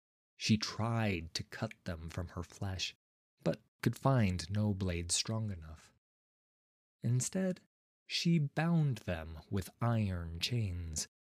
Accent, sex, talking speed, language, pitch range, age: American, male, 115 wpm, English, 85-130 Hz, 20-39